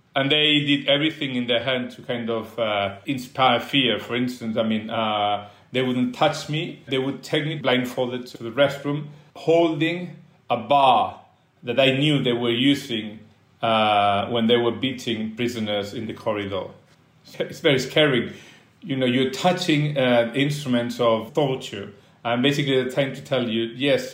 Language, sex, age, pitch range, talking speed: English, male, 40-59, 110-140 Hz, 165 wpm